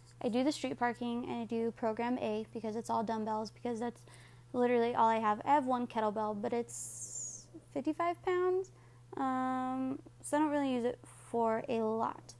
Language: English